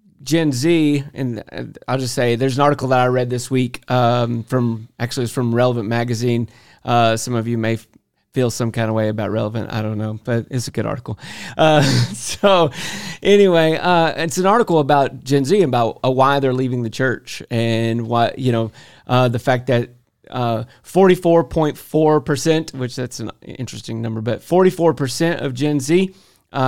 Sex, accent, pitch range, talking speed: male, American, 120-140 Hz, 180 wpm